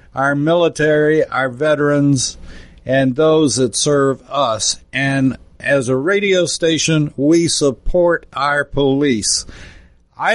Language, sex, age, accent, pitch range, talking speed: English, male, 60-79, American, 130-160 Hz, 110 wpm